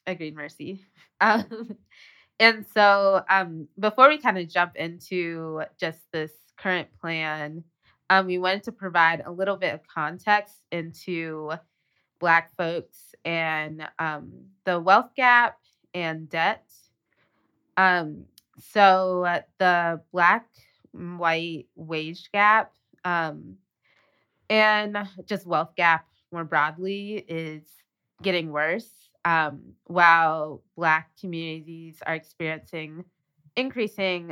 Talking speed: 105 wpm